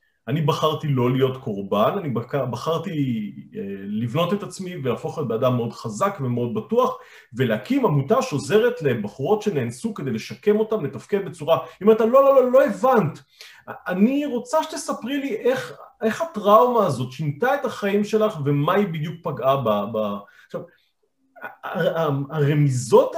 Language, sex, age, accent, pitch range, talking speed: Hebrew, male, 40-59, native, 130-215 Hz, 140 wpm